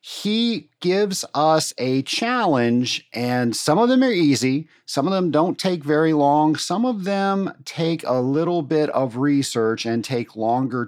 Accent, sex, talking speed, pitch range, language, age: American, male, 165 wpm, 120-170 Hz, English, 40-59